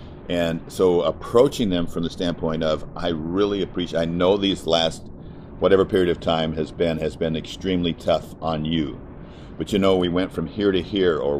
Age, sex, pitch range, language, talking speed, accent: 50-69, male, 80-90 Hz, English, 195 wpm, American